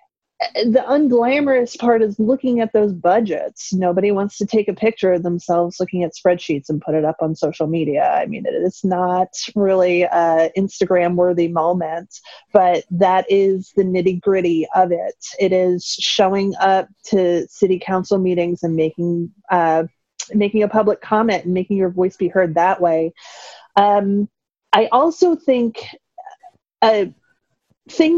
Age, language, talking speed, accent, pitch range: 30-49, English, 150 wpm, American, 180-220 Hz